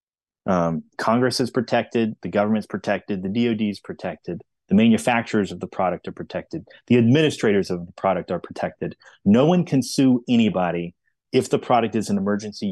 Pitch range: 100-130 Hz